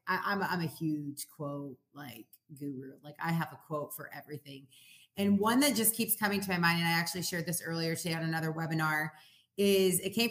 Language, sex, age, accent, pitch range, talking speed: English, female, 30-49, American, 170-230 Hz, 220 wpm